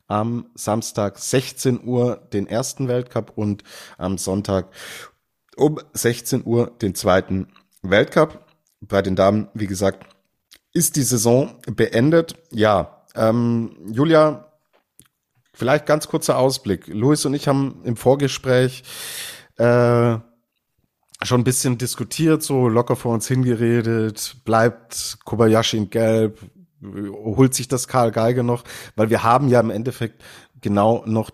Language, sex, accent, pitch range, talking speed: German, male, German, 100-125 Hz, 125 wpm